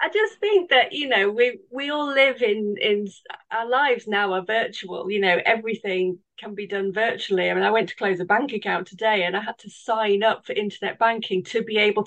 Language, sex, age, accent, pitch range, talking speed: English, female, 30-49, British, 190-230 Hz, 230 wpm